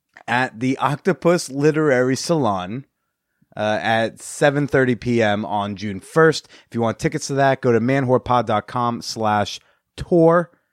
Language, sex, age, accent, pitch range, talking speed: English, male, 30-49, American, 115-145 Hz, 125 wpm